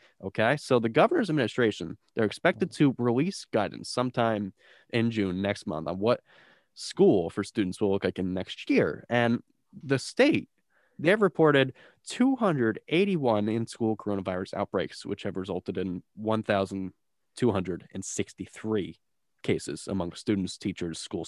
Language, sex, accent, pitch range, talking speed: English, male, American, 95-125 Hz, 130 wpm